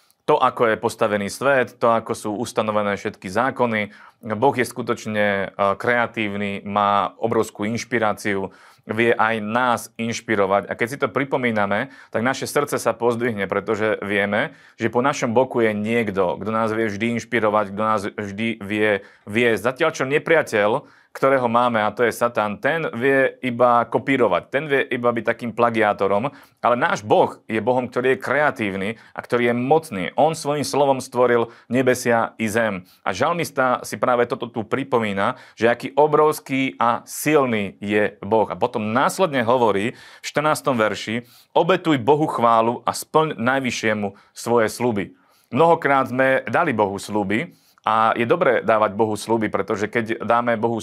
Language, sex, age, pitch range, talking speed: Slovak, male, 30-49, 105-125 Hz, 155 wpm